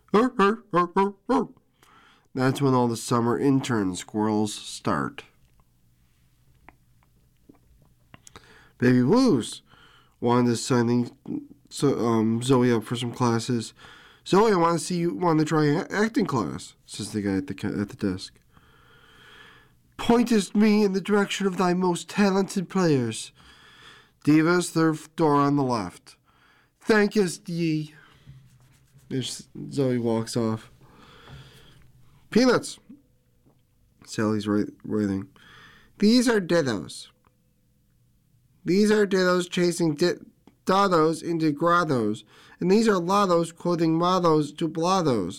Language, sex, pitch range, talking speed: English, male, 115-175 Hz, 115 wpm